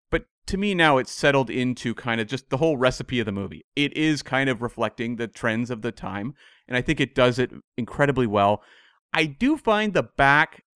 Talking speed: 220 wpm